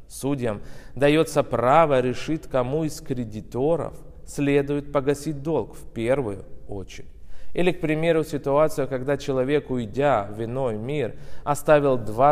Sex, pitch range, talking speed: male, 115-145 Hz, 120 wpm